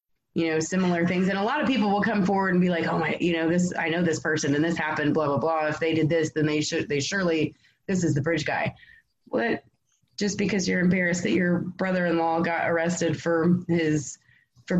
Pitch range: 155-185 Hz